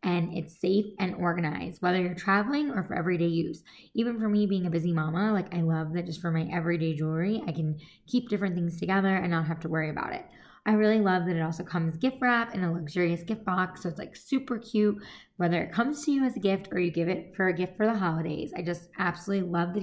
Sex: female